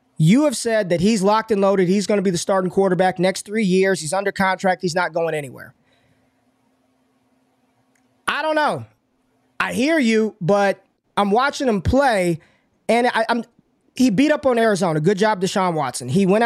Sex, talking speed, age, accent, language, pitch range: male, 180 wpm, 20-39, American, English, 180-230 Hz